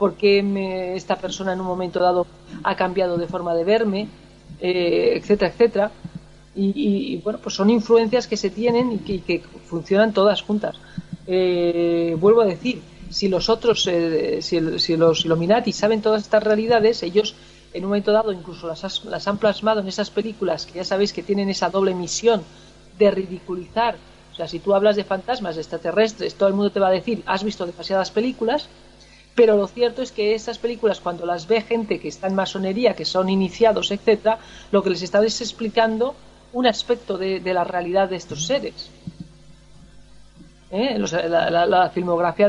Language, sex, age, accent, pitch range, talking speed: Spanish, female, 40-59, Spanish, 180-220 Hz, 185 wpm